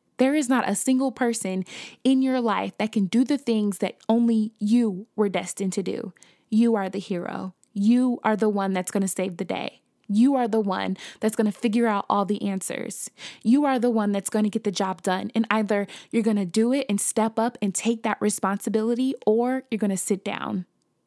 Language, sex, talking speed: English, female, 220 wpm